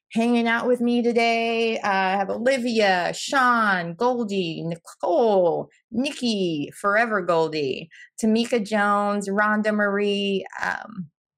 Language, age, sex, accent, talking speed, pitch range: English, 20-39, female, American, 105 wpm, 180-230 Hz